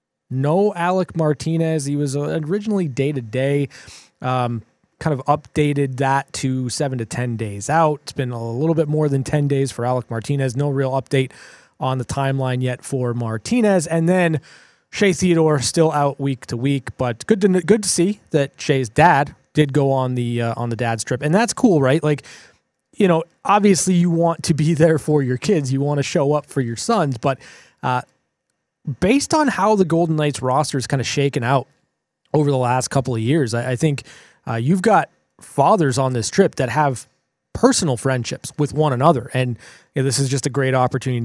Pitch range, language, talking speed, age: 120-155 Hz, English, 200 wpm, 20-39